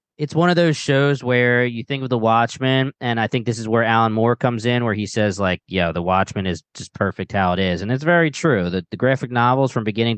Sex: male